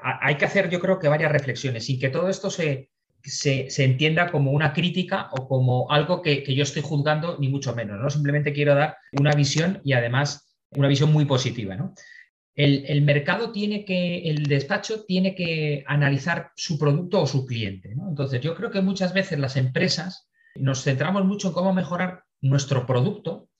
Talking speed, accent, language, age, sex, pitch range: 180 wpm, Spanish, Spanish, 30-49, male, 135-180 Hz